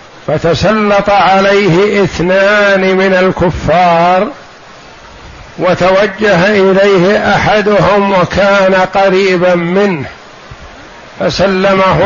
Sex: male